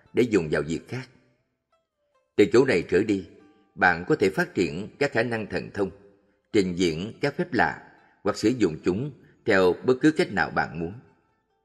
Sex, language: male, Vietnamese